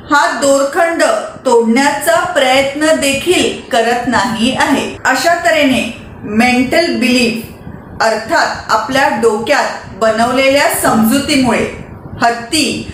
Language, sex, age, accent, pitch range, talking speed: Marathi, female, 40-59, native, 255-325 Hz, 85 wpm